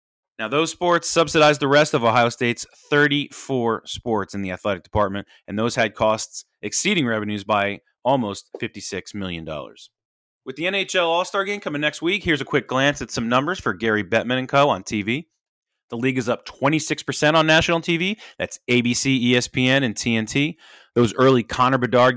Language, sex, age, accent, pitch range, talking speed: English, male, 30-49, American, 110-145 Hz, 175 wpm